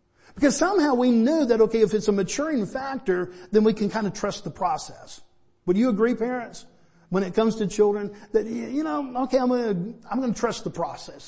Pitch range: 145-215 Hz